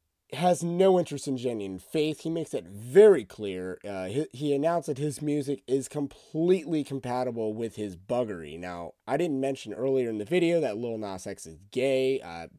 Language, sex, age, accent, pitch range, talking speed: English, male, 30-49, American, 105-155 Hz, 185 wpm